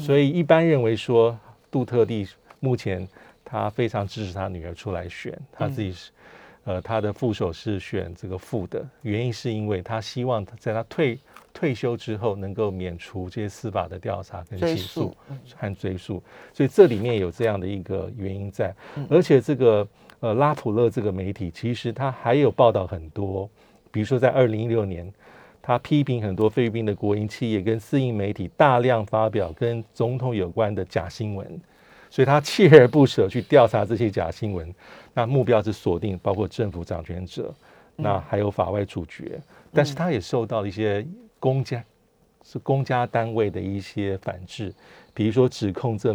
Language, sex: Chinese, male